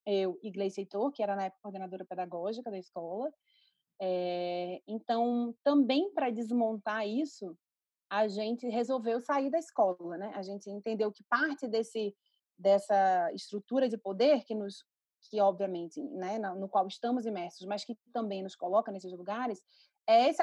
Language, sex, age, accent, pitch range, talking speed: Portuguese, female, 30-49, Brazilian, 200-255 Hz, 155 wpm